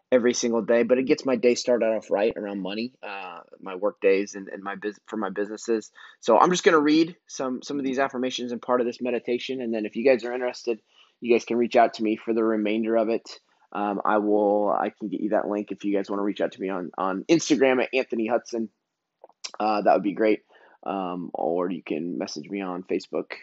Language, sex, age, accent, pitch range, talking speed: English, male, 20-39, American, 105-125 Hz, 245 wpm